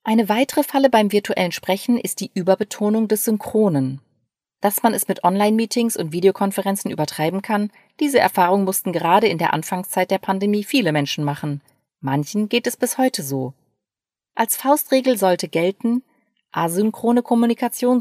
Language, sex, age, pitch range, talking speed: German, female, 30-49, 160-240 Hz, 145 wpm